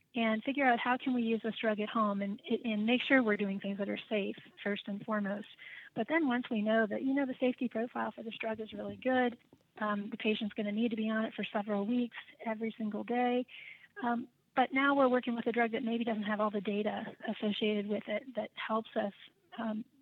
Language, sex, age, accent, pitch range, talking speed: English, female, 30-49, American, 205-235 Hz, 235 wpm